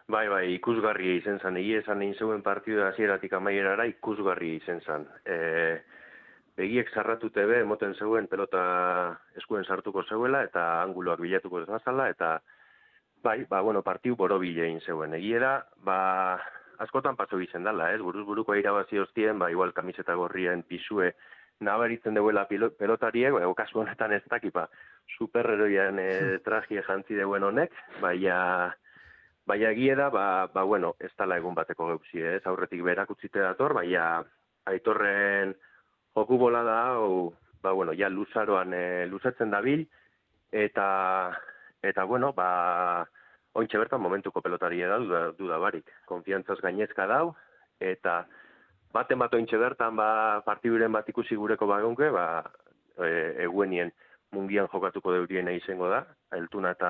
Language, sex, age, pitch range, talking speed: Polish, male, 30-49, 90-110 Hz, 140 wpm